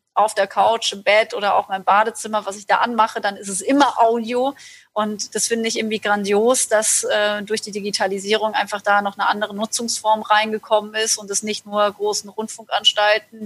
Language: German